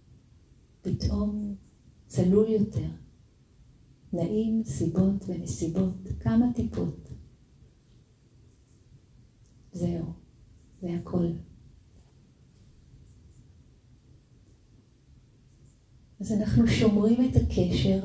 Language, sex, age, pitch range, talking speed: Hebrew, female, 40-59, 115-185 Hz, 55 wpm